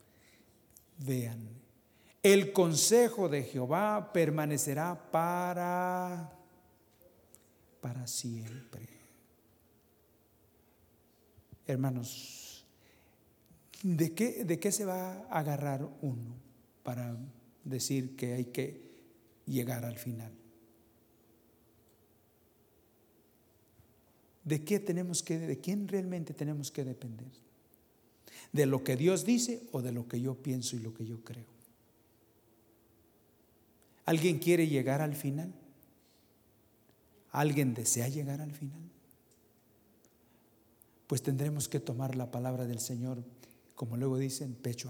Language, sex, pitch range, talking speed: English, male, 115-155 Hz, 100 wpm